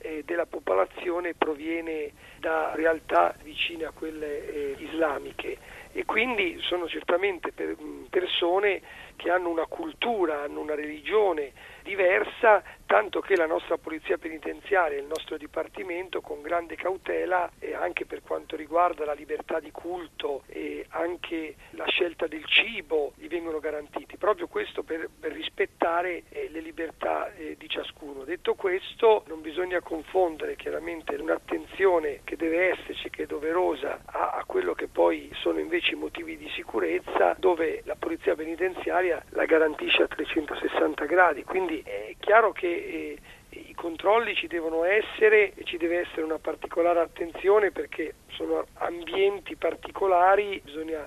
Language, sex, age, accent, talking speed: Italian, male, 40-59, native, 135 wpm